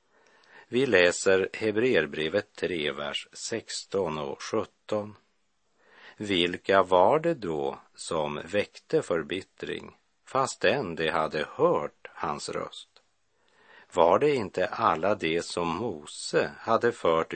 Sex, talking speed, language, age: male, 105 wpm, Swedish, 50-69